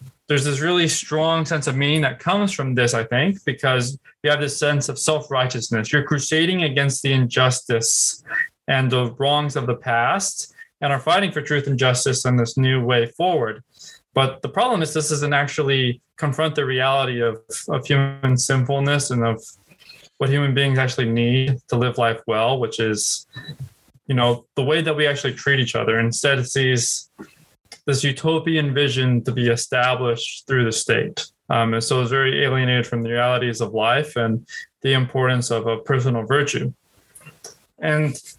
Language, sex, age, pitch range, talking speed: English, male, 20-39, 125-150 Hz, 175 wpm